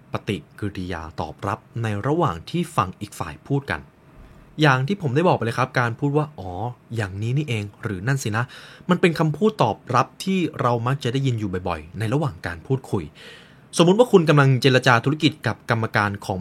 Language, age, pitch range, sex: Thai, 20-39, 105-150 Hz, male